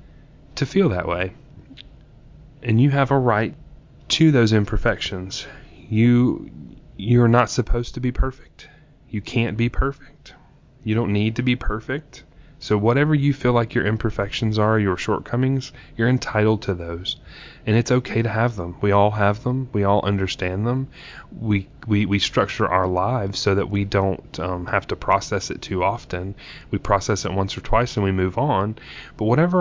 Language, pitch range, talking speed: English, 100-125 Hz, 175 wpm